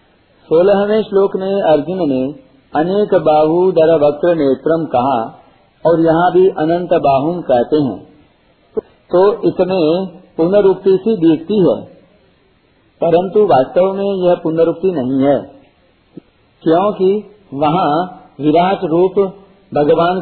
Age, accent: 50-69, native